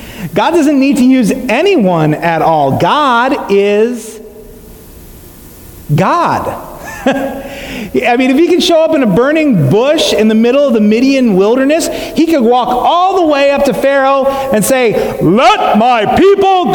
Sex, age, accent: male, 40-59, American